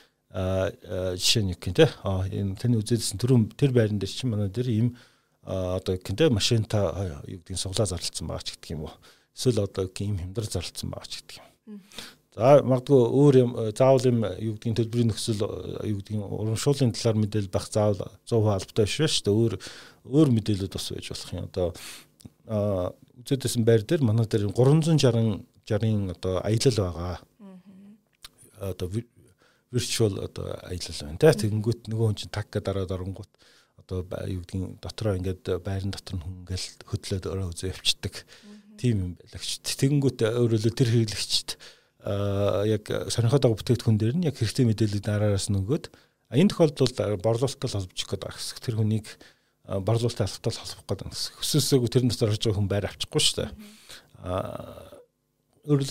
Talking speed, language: 100 wpm, Russian